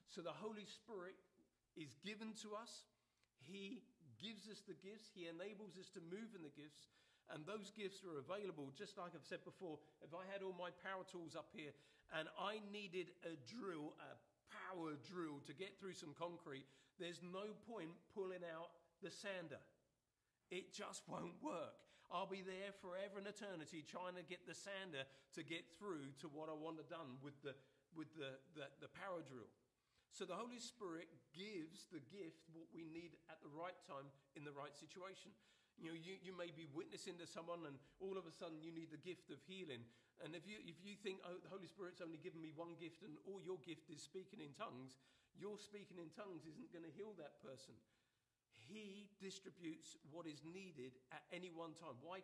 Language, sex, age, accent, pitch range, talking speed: English, male, 40-59, British, 155-190 Hz, 195 wpm